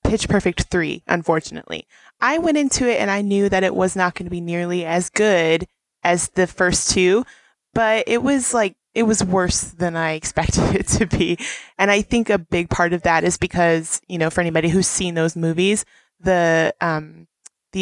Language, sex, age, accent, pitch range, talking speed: English, female, 20-39, American, 170-200 Hz, 190 wpm